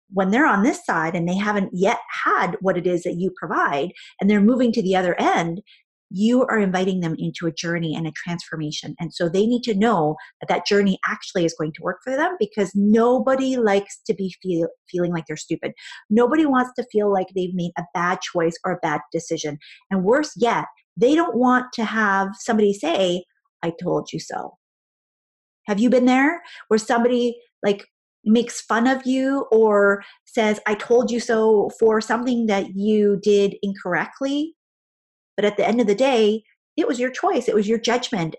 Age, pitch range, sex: 30-49, 180-240 Hz, female